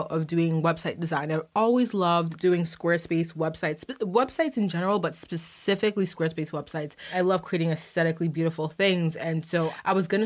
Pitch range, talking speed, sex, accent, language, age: 165-200 Hz, 165 wpm, female, American, English, 20-39